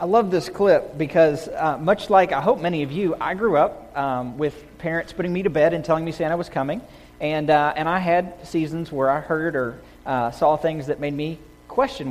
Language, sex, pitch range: English, male, 140-175 Hz